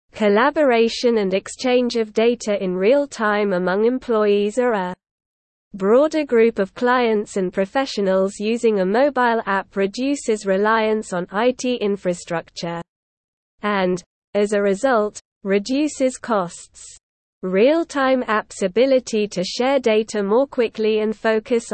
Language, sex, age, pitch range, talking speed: English, female, 20-39, 195-245 Hz, 115 wpm